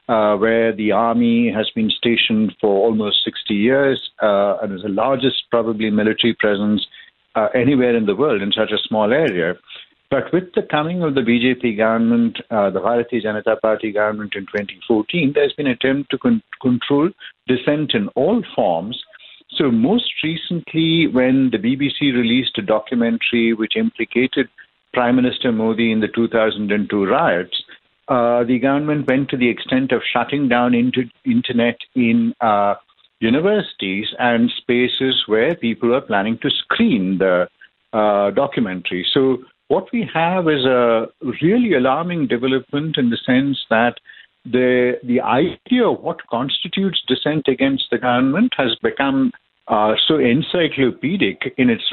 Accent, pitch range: Indian, 115-145 Hz